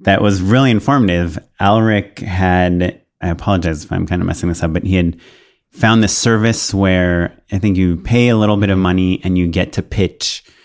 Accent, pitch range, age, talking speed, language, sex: American, 90-105 Hz, 30-49, 205 wpm, English, male